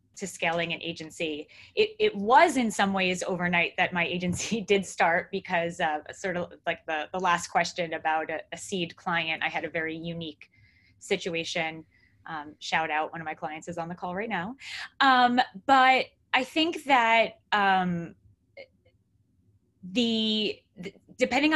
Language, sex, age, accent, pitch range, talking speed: English, female, 20-39, American, 170-215 Hz, 160 wpm